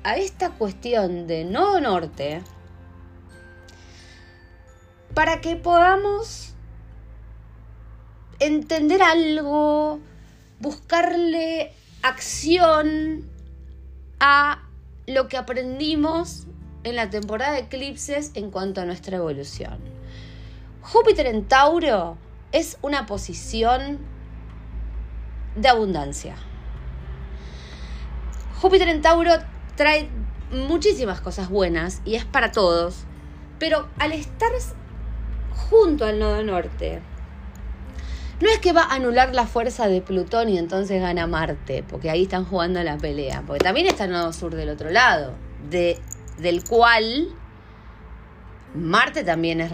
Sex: female